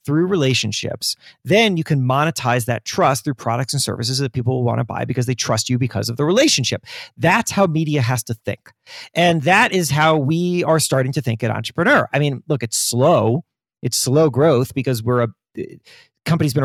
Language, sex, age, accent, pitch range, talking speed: English, male, 40-59, American, 125-165 Hz, 200 wpm